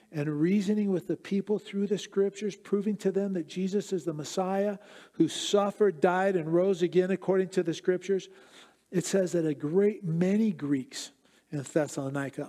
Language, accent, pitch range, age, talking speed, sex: English, American, 160-195 Hz, 50-69, 170 wpm, male